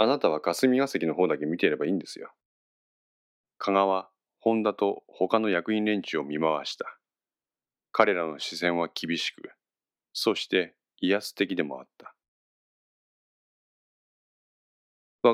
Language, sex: Japanese, male